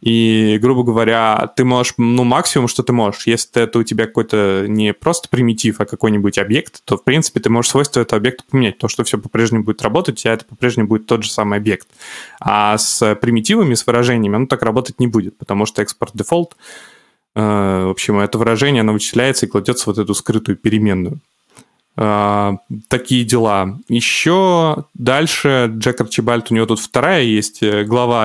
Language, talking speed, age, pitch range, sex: Russian, 175 wpm, 20-39, 105-125 Hz, male